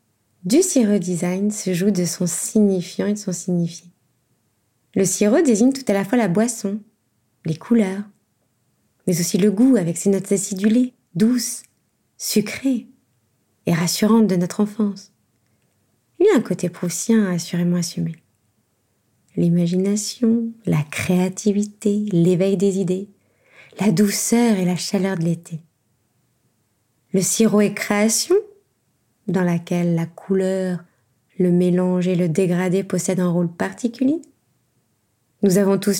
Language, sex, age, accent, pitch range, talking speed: French, female, 20-39, French, 170-210 Hz, 130 wpm